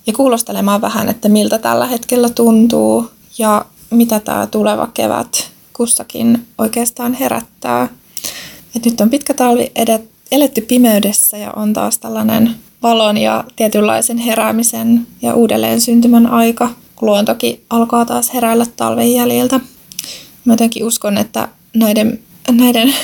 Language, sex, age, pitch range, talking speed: Finnish, female, 20-39, 215-240 Hz, 120 wpm